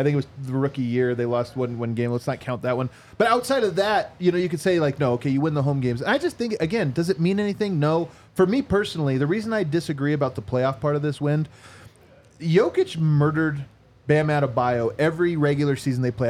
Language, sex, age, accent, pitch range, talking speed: English, male, 30-49, American, 135-175 Hz, 245 wpm